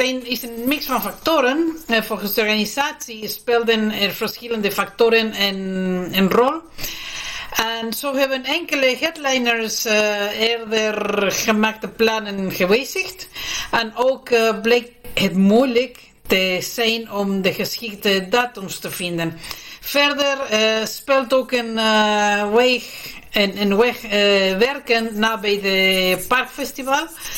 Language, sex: Italian, female